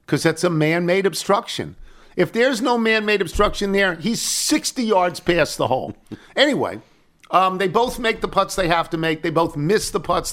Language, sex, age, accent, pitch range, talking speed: English, male, 50-69, American, 135-180 Hz, 190 wpm